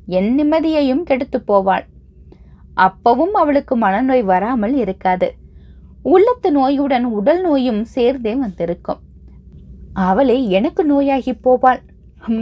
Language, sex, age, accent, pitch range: Tamil, female, 20-39, native, 195-280 Hz